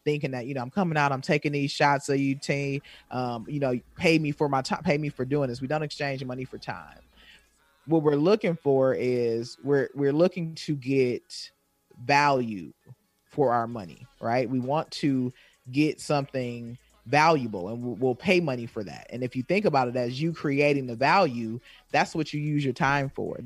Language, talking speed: English, 200 wpm